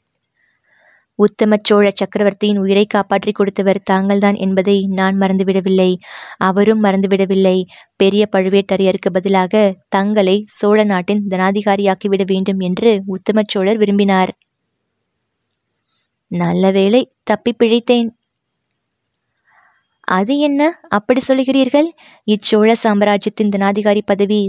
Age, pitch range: 20-39, 190-210 Hz